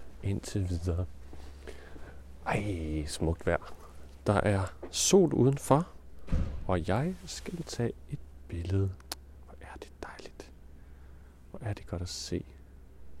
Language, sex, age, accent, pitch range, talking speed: Danish, male, 40-59, native, 75-110 Hz, 115 wpm